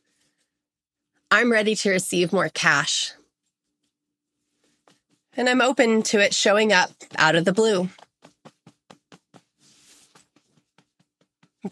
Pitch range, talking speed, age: 160-215 Hz, 90 wpm, 30-49